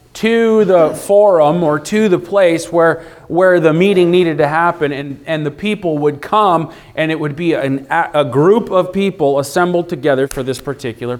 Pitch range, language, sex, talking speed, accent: 135-175 Hz, English, male, 180 wpm, American